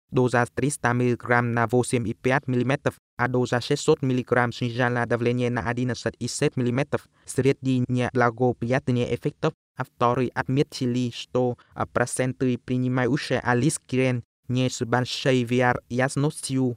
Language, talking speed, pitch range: Russian, 105 wpm, 120-130 Hz